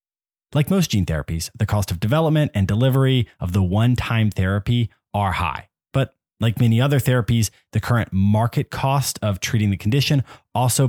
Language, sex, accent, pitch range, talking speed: English, male, American, 95-120 Hz, 165 wpm